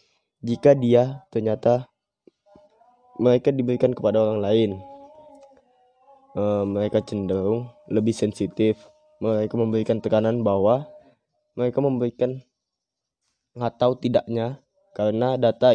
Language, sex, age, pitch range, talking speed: Indonesian, male, 10-29, 110-135 Hz, 90 wpm